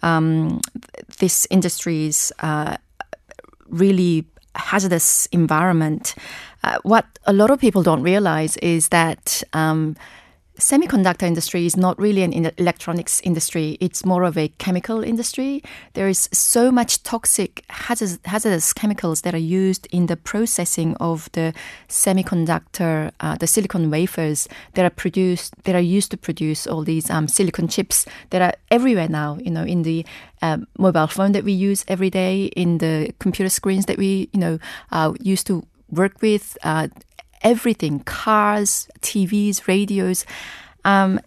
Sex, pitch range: female, 165-210 Hz